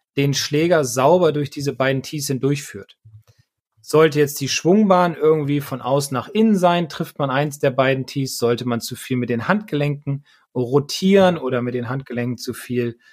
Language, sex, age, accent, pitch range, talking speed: German, male, 30-49, German, 125-160 Hz, 175 wpm